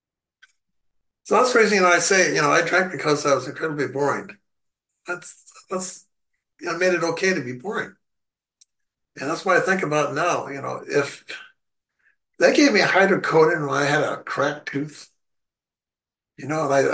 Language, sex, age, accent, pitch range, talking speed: English, male, 60-79, American, 140-175 Hz, 185 wpm